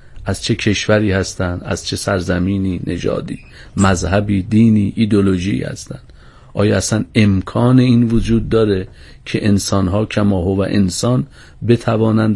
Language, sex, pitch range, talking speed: Persian, male, 100-130 Hz, 120 wpm